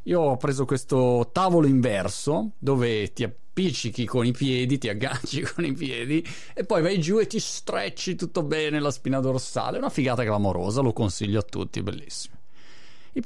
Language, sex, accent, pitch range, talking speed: Italian, male, native, 130-210 Hz, 170 wpm